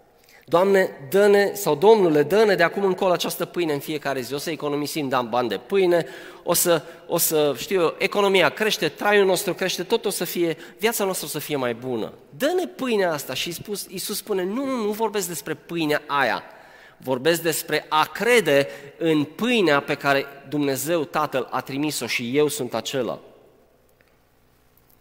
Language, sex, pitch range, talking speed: Romanian, male, 135-185 Hz, 170 wpm